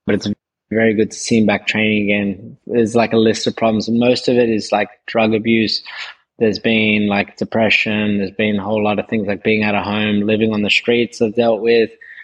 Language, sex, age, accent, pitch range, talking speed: English, male, 20-39, Australian, 105-115 Hz, 230 wpm